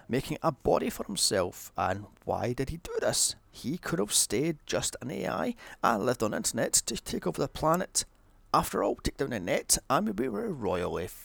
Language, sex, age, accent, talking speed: English, male, 30-49, British, 205 wpm